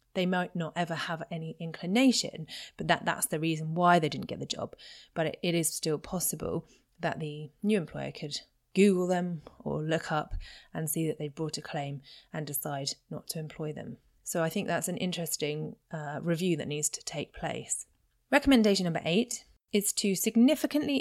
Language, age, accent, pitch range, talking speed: English, 30-49, British, 150-185 Hz, 185 wpm